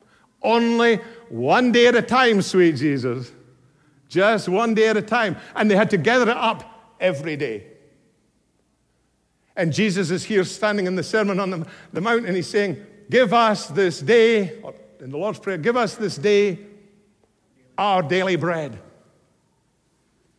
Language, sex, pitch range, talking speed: English, male, 165-230 Hz, 155 wpm